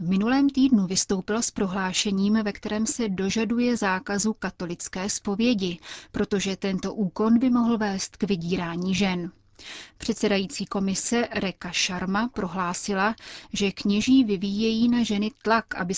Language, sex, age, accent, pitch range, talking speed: Czech, female, 30-49, native, 190-215 Hz, 130 wpm